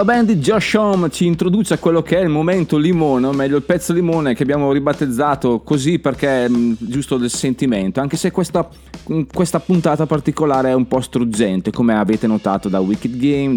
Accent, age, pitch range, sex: native, 20-39, 115-155 Hz, male